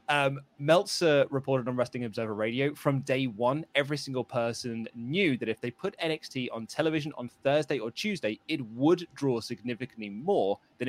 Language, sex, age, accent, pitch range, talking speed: English, male, 20-39, British, 110-140 Hz, 170 wpm